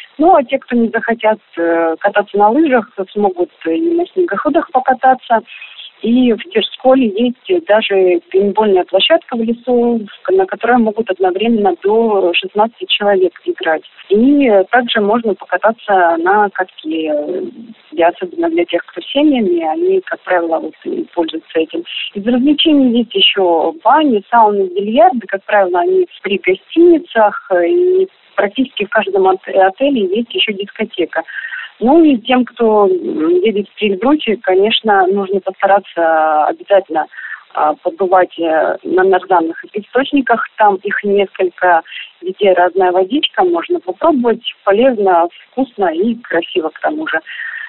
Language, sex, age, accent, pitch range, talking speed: Russian, female, 30-49, native, 185-260 Hz, 125 wpm